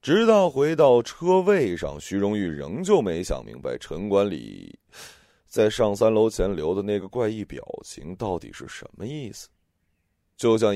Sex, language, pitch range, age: male, Chinese, 85-125 Hz, 30-49